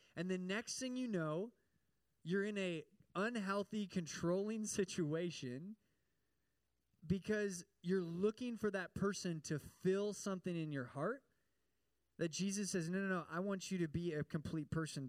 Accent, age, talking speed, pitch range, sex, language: American, 20-39, 150 wpm, 160-200 Hz, male, English